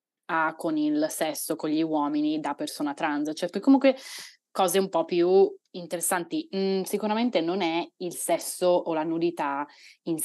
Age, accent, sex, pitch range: 20-39, native, female, 155-195 Hz